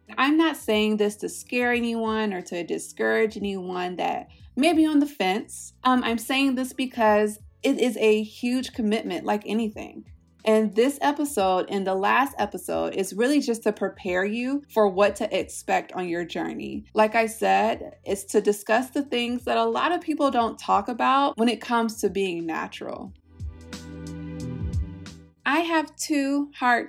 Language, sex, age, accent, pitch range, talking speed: English, female, 20-39, American, 195-250 Hz, 165 wpm